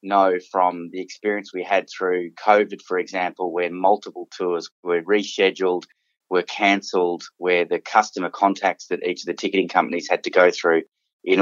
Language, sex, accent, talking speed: English, male, Australian, 170 wpm